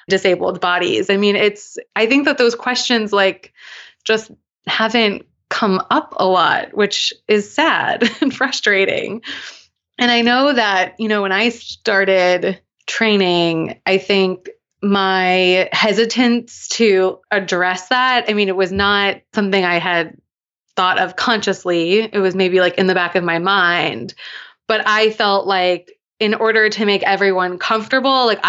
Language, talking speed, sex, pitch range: English, 150 wpm, female, 190-230 Hz